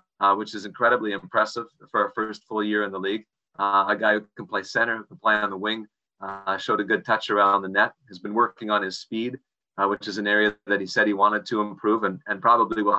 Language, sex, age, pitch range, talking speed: English, male, 30-49, 100-120 Hz, 255 wpm